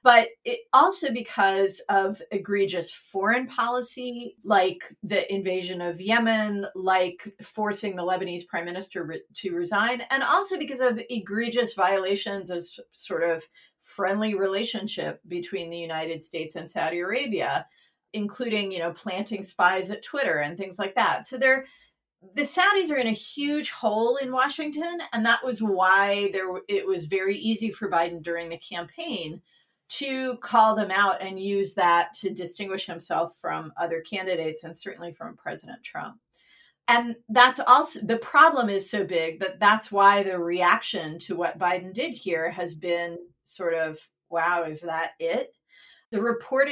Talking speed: 155 wpm